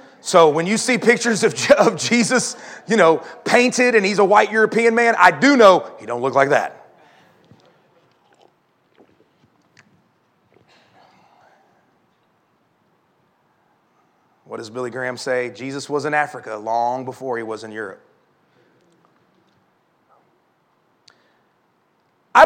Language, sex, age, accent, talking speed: English, male, 30-49, American, 105 wpm